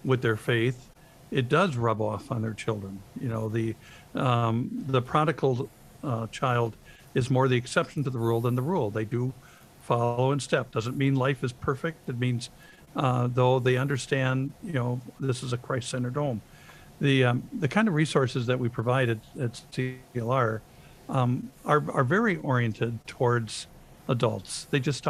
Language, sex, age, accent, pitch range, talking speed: English, male, 60-79, American, 120-145 Hz, 170 wpm